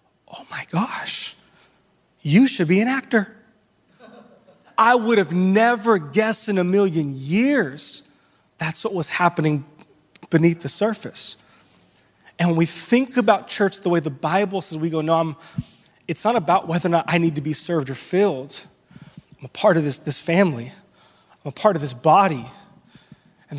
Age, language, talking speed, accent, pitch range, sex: 20-39, English, 165 wpm, American, 155-195 Hz, male